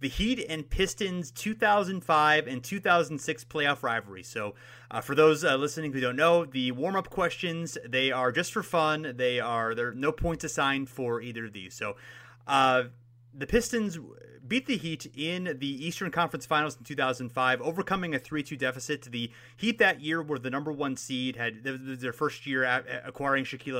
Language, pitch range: English, 120-155 Hz